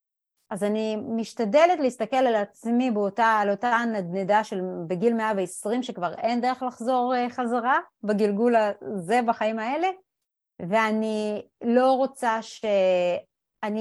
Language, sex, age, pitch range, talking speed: Hebrew, female, 30-49, 210-275 Hz, 115 wpm